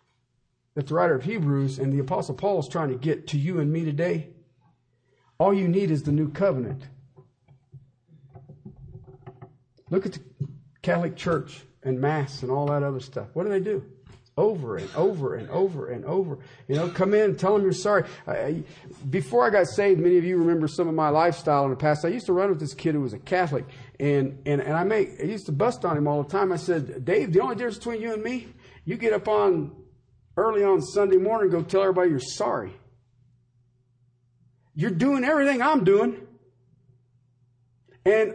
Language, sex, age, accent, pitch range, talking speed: English, male, 50-69, American, 125-200 Hz, 195 wpm